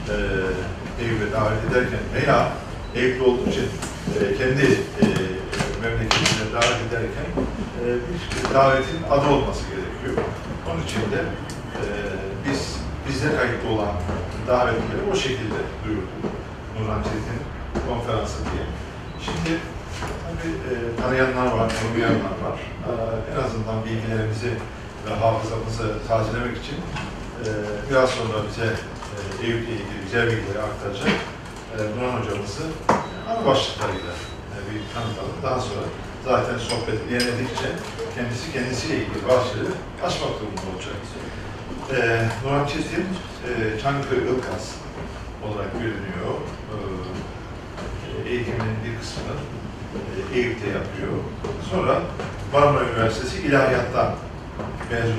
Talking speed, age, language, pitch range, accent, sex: 95 wpm, 40-59, Turkish, 100-120 Hz, native, male